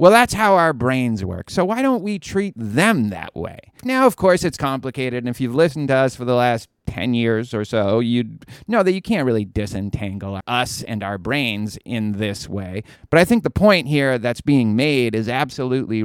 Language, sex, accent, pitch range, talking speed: English, male, American, 115-160 Hz, 215 wpm